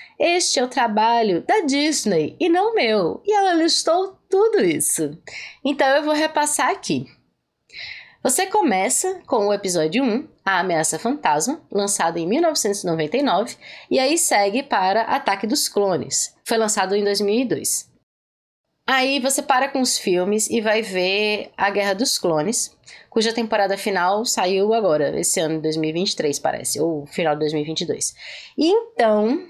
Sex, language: female, Portuguese